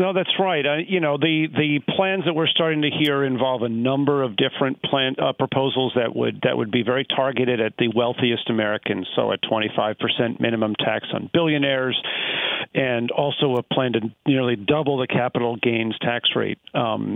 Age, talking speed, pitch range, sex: 50-69, 190 wpm, 120-140 Hz, male